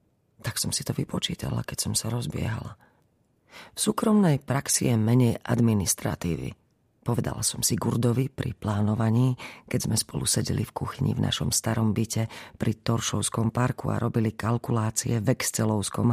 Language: Slovak